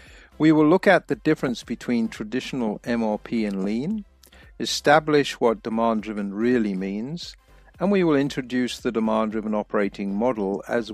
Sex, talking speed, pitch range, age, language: male, 135 wpm, 105-145 Hz, 60-79, English